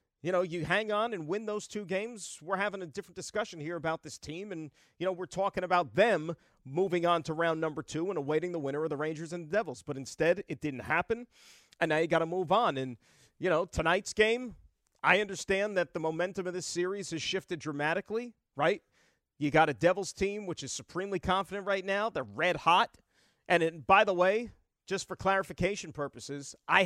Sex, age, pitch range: male, 40-59, 160-210 Hz